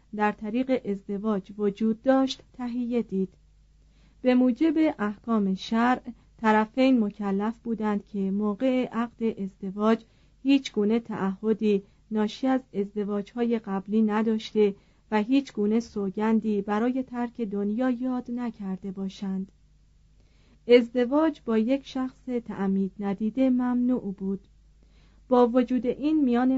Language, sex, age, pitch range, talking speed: Persian, female, 40-59, 200-245 Hz, 110 wpm